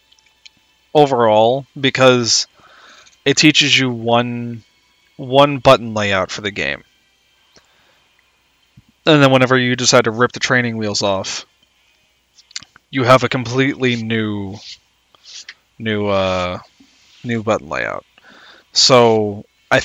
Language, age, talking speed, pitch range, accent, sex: English, 20-39, 105 wpm, 110-130 Hz, American, male